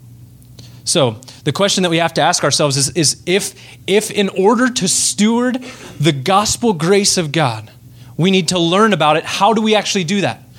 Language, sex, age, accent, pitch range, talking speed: English, male, 20-39, American, 135-195 Hz, 195 wpm